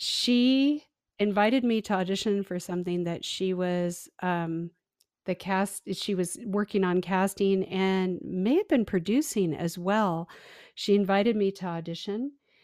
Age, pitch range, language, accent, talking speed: 50-69, 180-220 Hz, English, American, 140 wpm